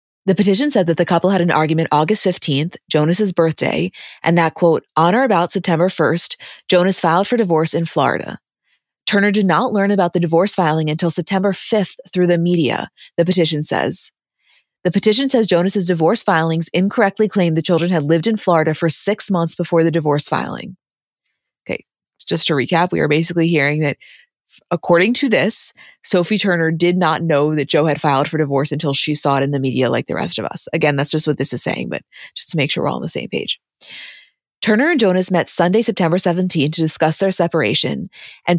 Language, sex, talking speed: English, female, 200 wpm